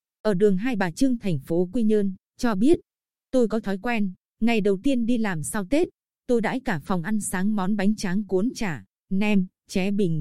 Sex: female